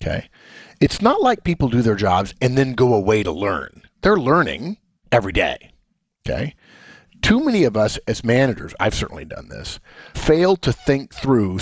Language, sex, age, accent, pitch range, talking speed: English, male, 50-69, American, 95-130 Hz, 170 wpm